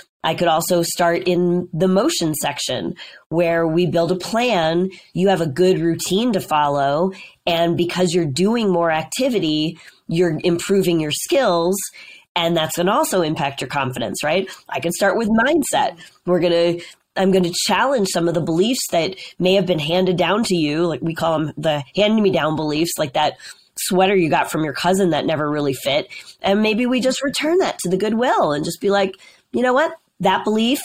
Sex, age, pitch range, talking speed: female, 20-39, 165-195 Hz, 200 wpm